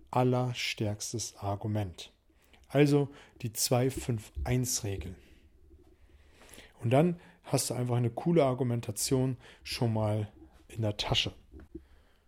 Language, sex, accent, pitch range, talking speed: German, male, German, 110-140 Hz, 100 wpm